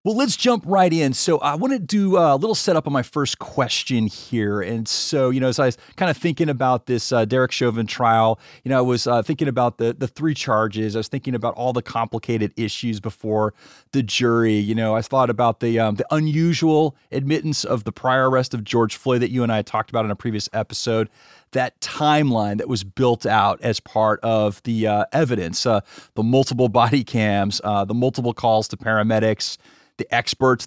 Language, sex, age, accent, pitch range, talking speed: English, male, 30-49, American, 110-145 Hz, 210 wpm